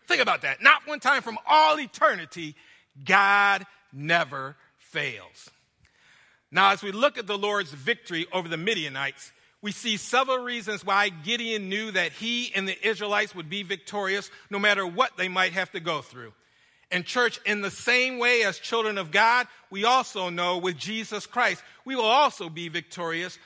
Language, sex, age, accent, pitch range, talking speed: English, male, 50-69, American, 160-220 Hz, 175 wpm